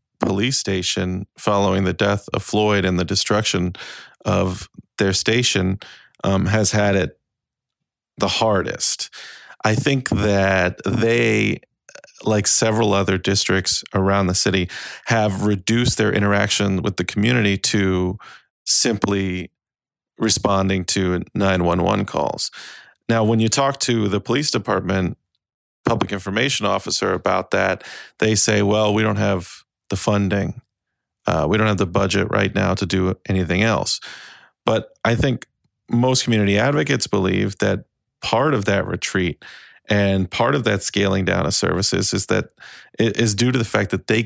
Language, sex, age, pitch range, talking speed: English, male, 30-49, 95-110 Hz, 145 wpm